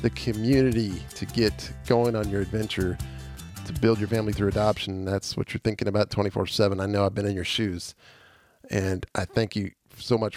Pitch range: 100-120 Hz